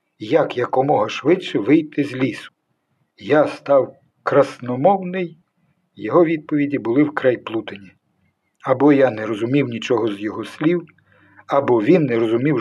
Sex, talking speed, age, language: male, 125 wpm, 50-69, Ukrainian